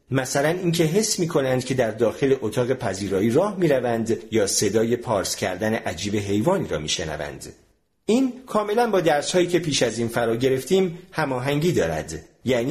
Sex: male